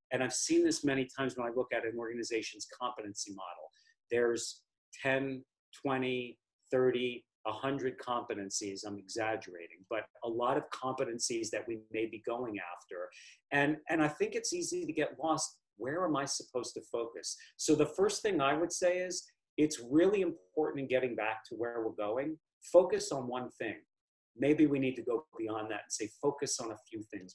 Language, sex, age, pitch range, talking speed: English, male, 40-59, 125-175 Hz, 185 wpm